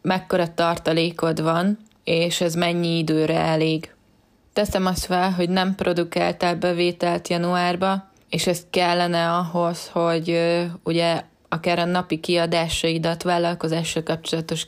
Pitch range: 160-180 Hz